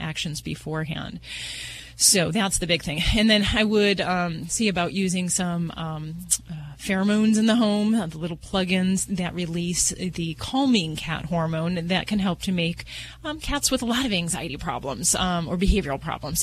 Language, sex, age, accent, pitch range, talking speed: English, female, 30-49, American, 160-195 Hz, 180 wpm